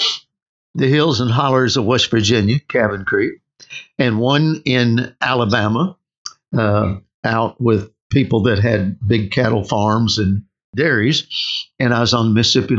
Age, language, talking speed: 60-79, English, 140 wpm